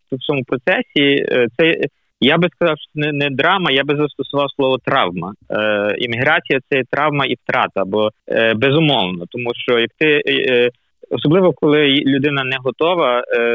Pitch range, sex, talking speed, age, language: 120-145 Hz, male, 155 wpm, 20-39, Ukrainian